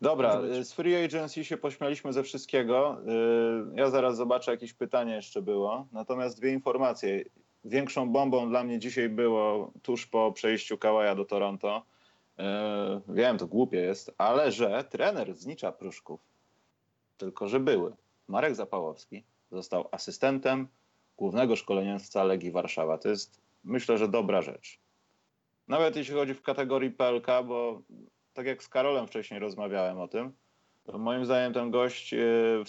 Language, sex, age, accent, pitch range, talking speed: Polish, male, 30-49, native, 110-130 Hz, 140 wpm